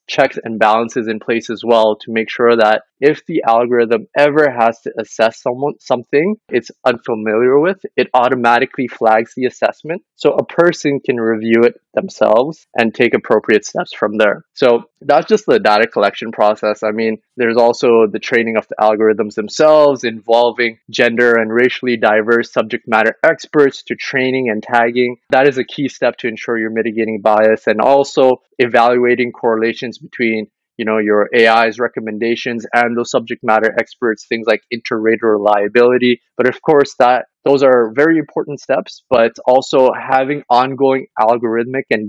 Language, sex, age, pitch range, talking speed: English, male, 20-39, 110-130 Hz, 165 wpm